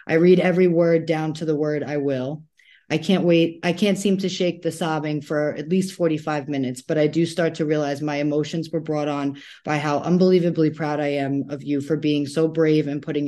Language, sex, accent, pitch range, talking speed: English, female, American, 140-165 Hz, 225 wpm